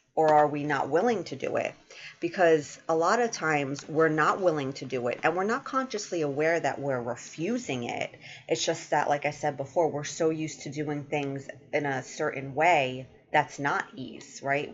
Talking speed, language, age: 200 wpm, English, 30-49